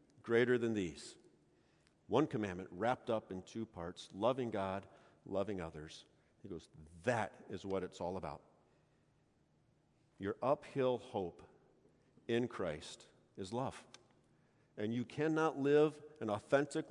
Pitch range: 90-125 Hz